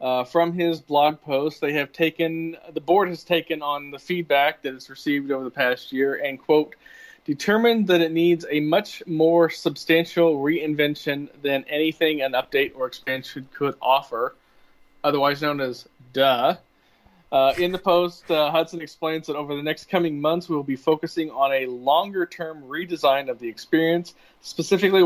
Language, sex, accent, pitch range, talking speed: English, male, American, 140-170 Hz, 170 wpm